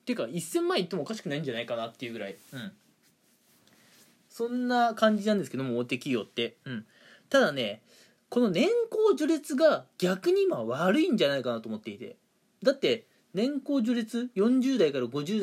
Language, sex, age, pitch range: Japanese, male, 20-39, 150-245 Hz